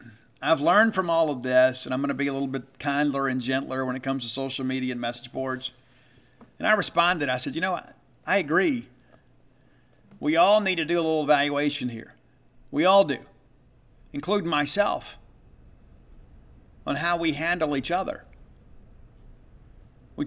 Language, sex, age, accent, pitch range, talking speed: English, male, 50-69, American, 130-160 Hz, 170 wpm